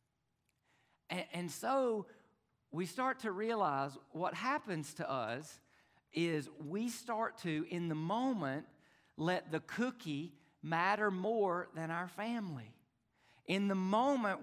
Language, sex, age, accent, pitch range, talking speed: English, male, 50-69, American, 170-235 Hz, 115 wpm